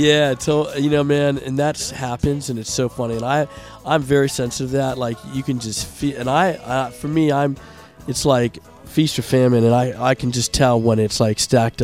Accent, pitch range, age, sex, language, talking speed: American, 115-140 Hz, 40-59, male, English, 225 wpm